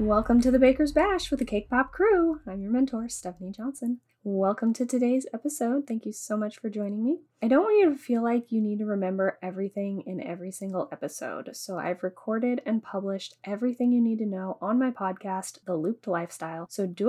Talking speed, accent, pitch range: 210 wpm, American, 185-250 Hz